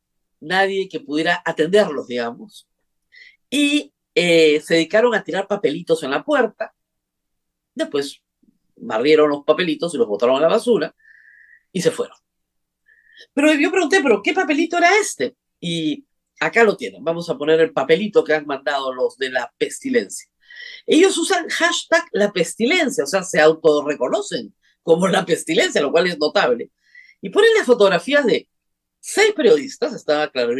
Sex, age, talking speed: female, 40-59, 150 wpm